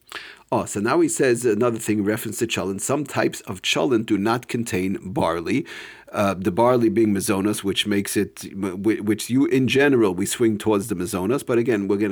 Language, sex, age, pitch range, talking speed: English, male, 40-59, 105-120 Hz, 195 wpm